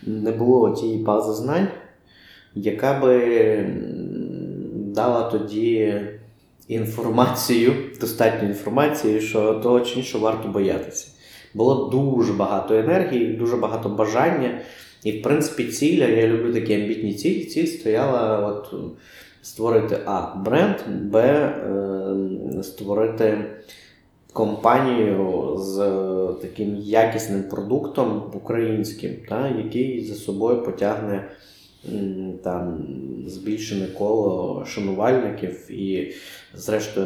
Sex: male